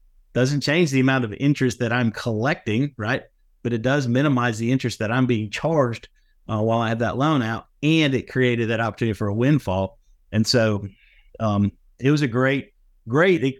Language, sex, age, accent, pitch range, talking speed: English, male, 50-69, American, 110-135 Hz, 190 wpm